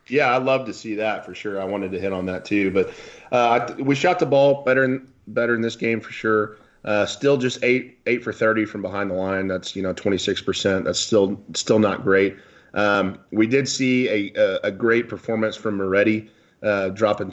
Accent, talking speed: American, 210 wpm